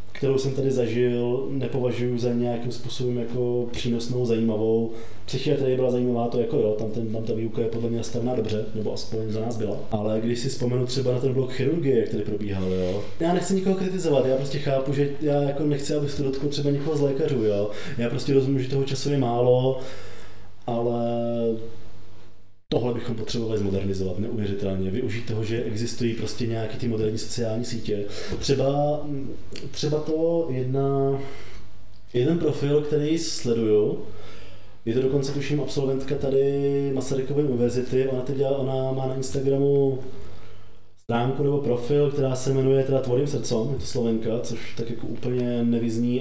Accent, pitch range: native, 115-140 Hz